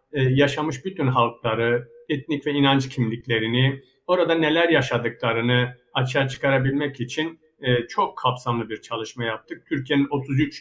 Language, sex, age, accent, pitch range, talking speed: Turkish, male, 60-79, native, 120-155 Hz, 115 wpm